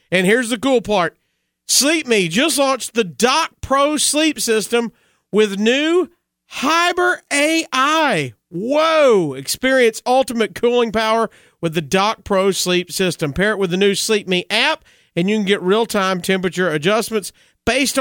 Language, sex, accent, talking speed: English, male, American, 145 wpm